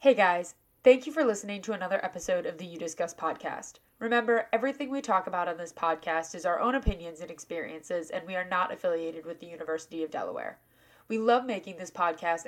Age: 20-39